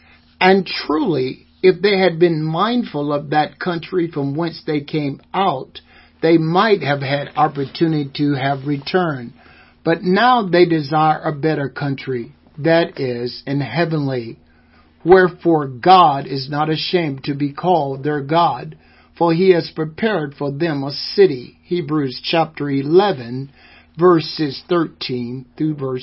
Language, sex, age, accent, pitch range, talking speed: English, male, 60-79, American, 135-180 Hz, 135 wpm